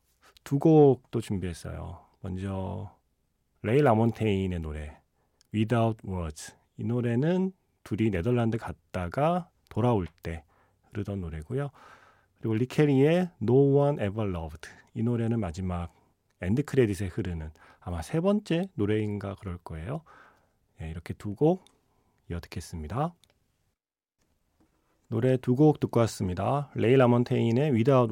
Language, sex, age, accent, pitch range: Korean, male, 40-59, native, 90-130 Hz